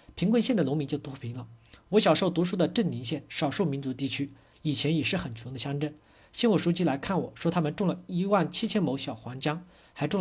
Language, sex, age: Chinese, male, 50-69